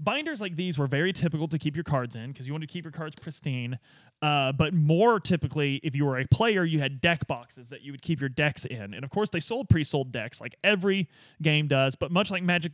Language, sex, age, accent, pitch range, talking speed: English, male, 20-39, American, 135-165 Hz, 255 wpm